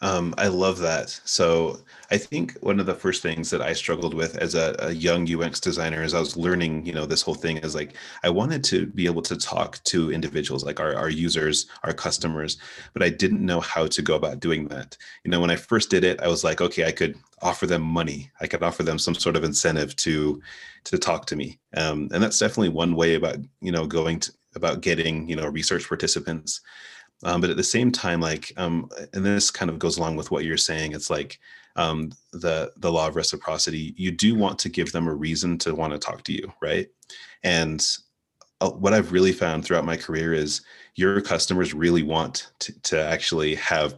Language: English